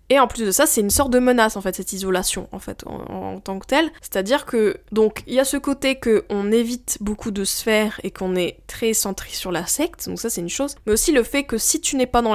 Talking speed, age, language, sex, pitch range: 285 wpm, 20-39, French, female, 195-235 Hz